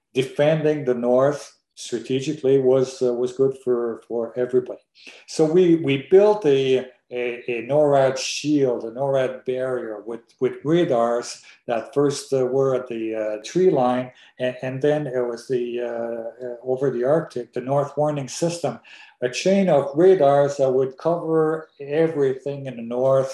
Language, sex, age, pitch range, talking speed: English, male, 50-69, 125-150 Hz, 155 wpm